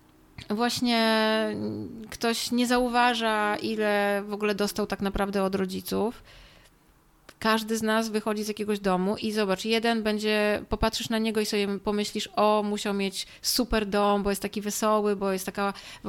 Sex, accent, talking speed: female, native, 155 wpm